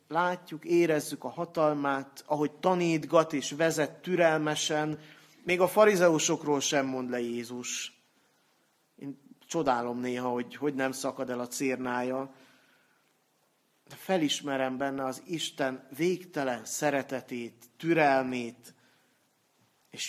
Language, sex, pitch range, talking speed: Hungarian, male, 130-155 Hz, 105 wpm